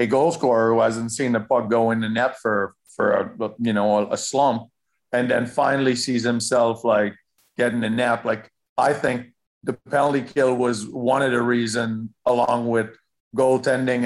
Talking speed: 180 wpm